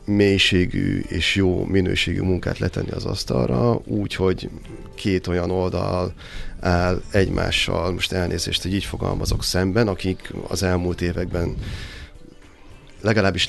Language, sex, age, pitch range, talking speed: Hungarian, male, 30-49, 90-105 Hz, 110 wpm